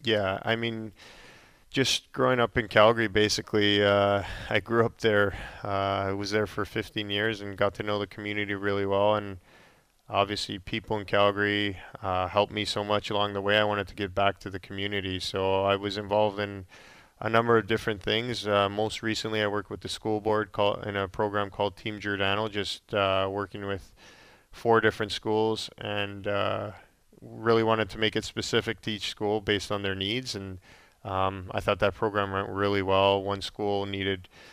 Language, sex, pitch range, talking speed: English, male, 100-110 Hz, 190 wpm